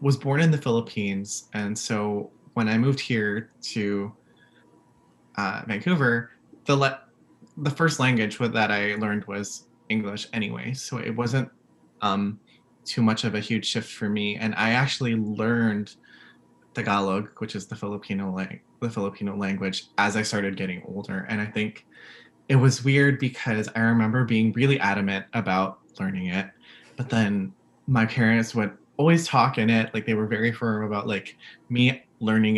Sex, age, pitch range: male, 20-39, 100-120 Hz